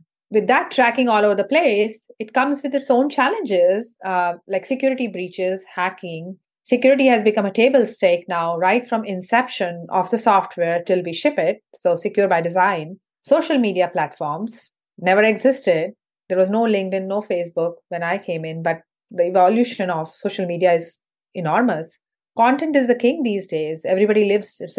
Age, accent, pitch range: 30-49, Indian, 180-240 Hz